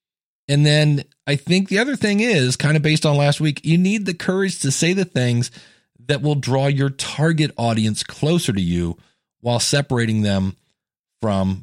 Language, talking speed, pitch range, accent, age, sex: English, 180 wpm, 105-150 Hz, American, 40-59, male